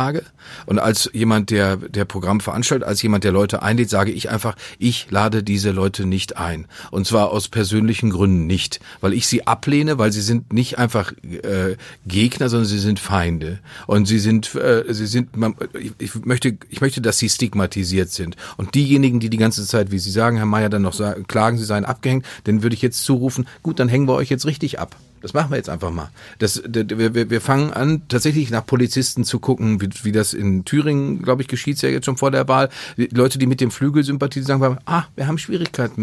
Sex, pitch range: male, 105-130 Hz